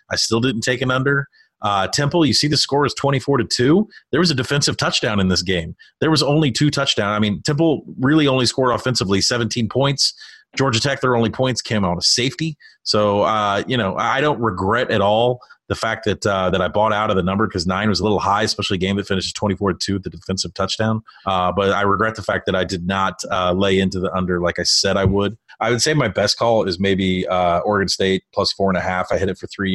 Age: 30-49